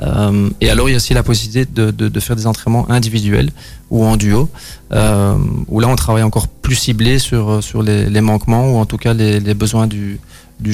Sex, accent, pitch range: male, French, 105-120 Hz